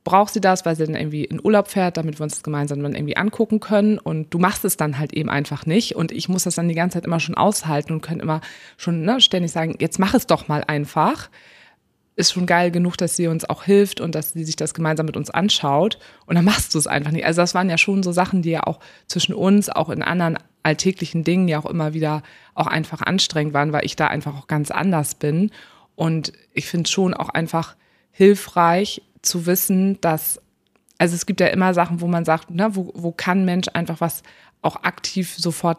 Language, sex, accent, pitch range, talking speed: German, female, German, 155-185 Hz, 235 wpm